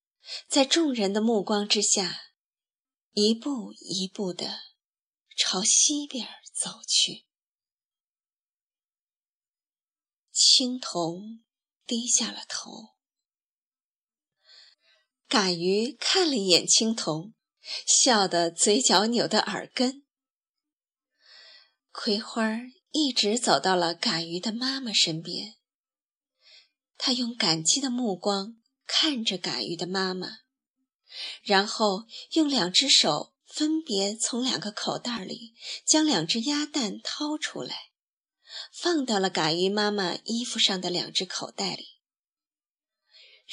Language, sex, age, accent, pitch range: Chinese, female, 20-39, native, 190-260 Hz